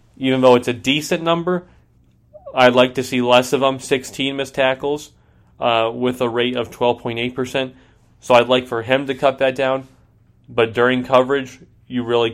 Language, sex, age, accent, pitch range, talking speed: English, male, 30-49, American, 110-130 Hz, 175 wpm